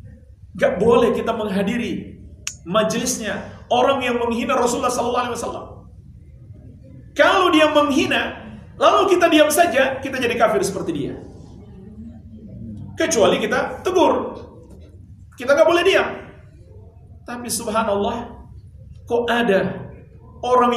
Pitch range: 215-300 Hz